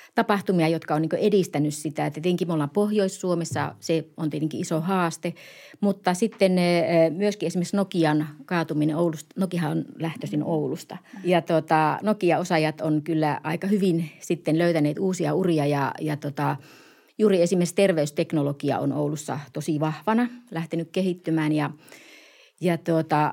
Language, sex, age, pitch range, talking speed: Finnish, female, 30-49, 155-185 Hz, 135 wpm